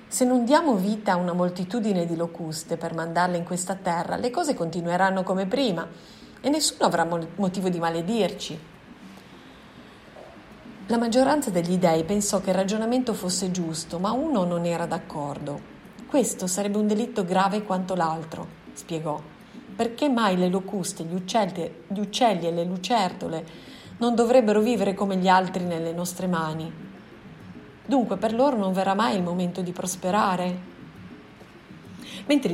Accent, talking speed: native, 145 wpm